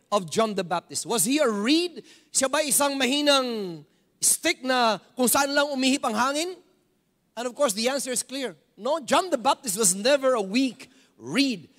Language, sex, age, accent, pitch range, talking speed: English, male, 40-59, Filipino, 205-260 Hz, 185 wpm